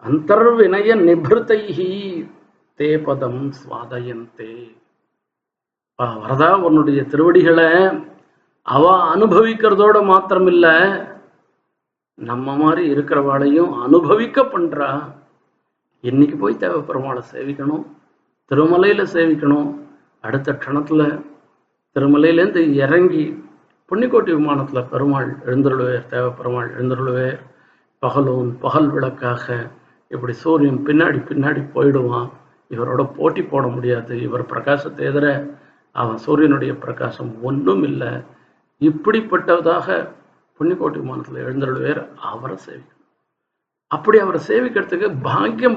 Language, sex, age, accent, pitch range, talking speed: Tamil, male, 50-69, native, 130-165 Hz, 80 wpm